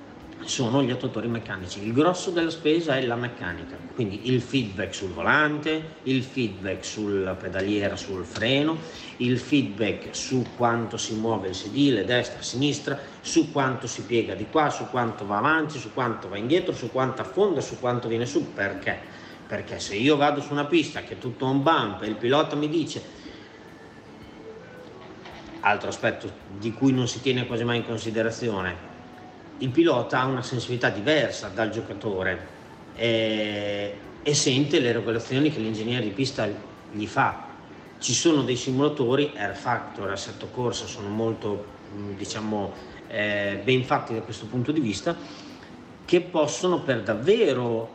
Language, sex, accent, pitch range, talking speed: Italian, male, native, 110-145 Hz, 155 wpm